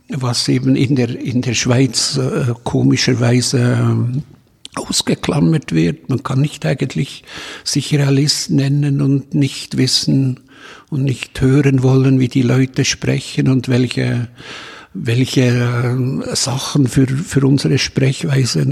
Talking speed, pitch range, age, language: 115 wpm, 125-140 Hz, 60-79, German